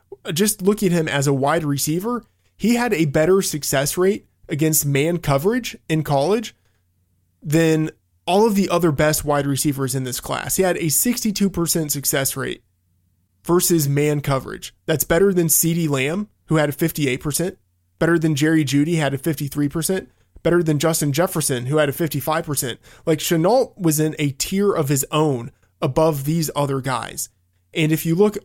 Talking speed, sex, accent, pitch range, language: 170 wpm, male, American, 135-170 Hz, English